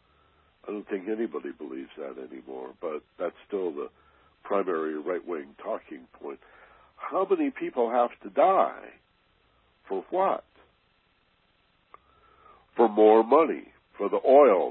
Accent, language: American, English